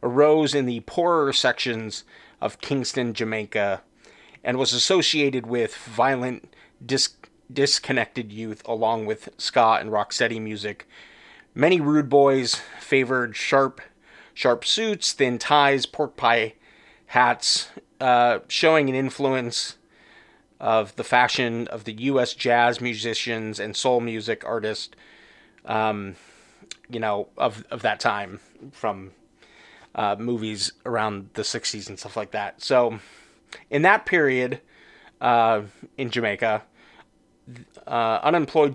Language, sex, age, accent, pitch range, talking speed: English, male, 30-49, American, 115-140 Hz, 120 wpm